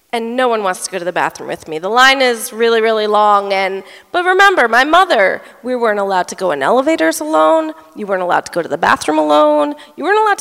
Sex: female